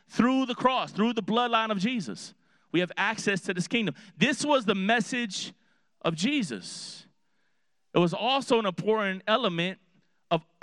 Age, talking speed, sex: 30-49, 150 wpm, male